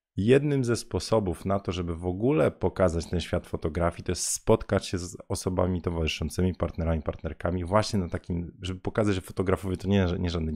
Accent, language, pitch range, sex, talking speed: native, Polish, 80-100 Hz, male, 180 wpm